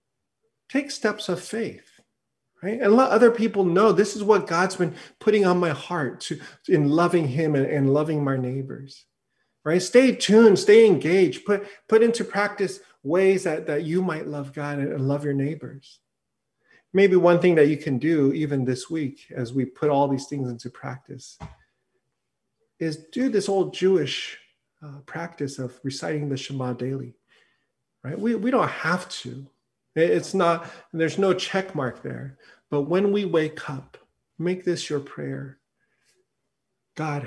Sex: male